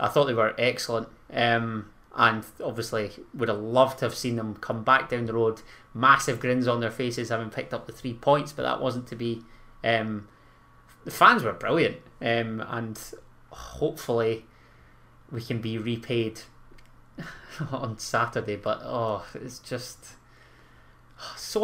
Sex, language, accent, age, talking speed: male, English, British, 20-39, 155 wpm